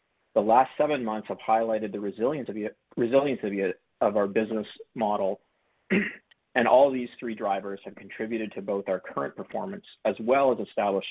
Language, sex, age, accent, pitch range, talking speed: English, male, 40-59, American, 100-115 Hz, 150 wpm